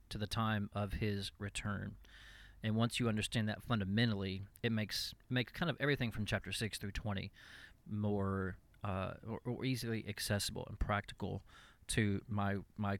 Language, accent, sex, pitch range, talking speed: English, American, male, 100-115 Hz, 150 wpm